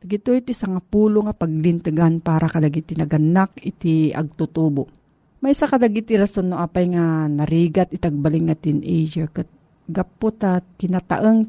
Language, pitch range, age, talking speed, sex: Filipino, 160-210 Hz, 40-59, 125 wpm, female